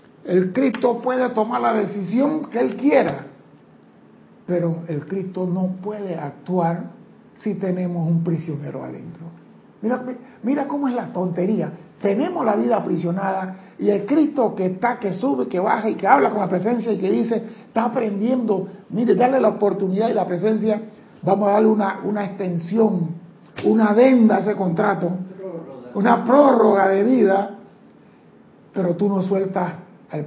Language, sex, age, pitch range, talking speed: Spanish, male, 60-79, 175-220 Hz, 155 wpm